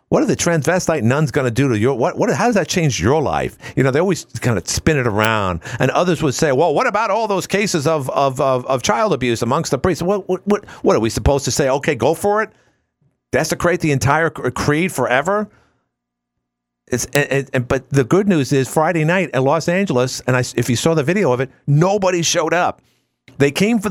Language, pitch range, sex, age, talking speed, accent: English, 120-165 Hz, male, 50-69, 235 wpm, American